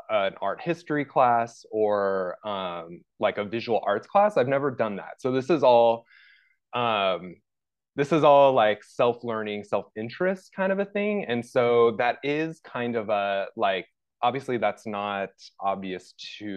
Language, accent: English, American